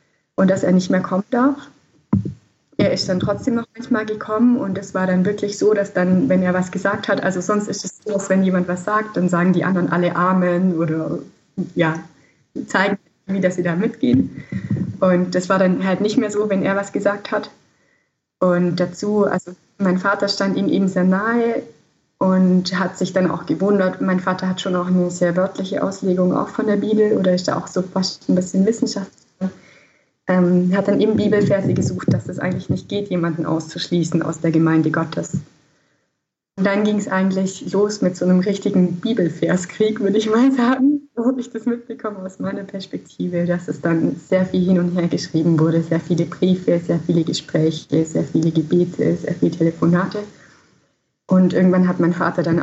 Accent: German